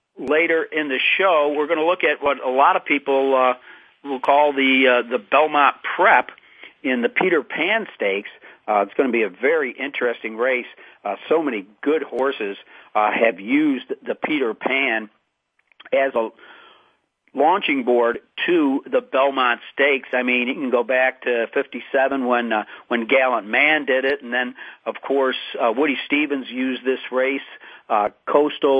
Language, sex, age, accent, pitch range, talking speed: English, male, 50-69, American, 125-150 Hz, 170 wpm